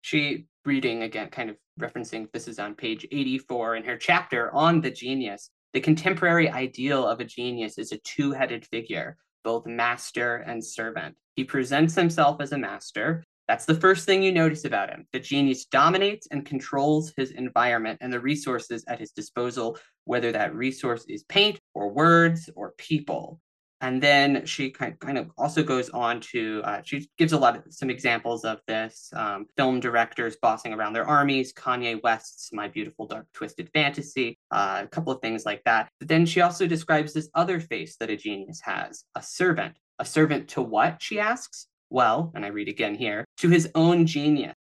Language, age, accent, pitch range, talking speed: English, 20-39, American, 120-160 Hz, 185 wpm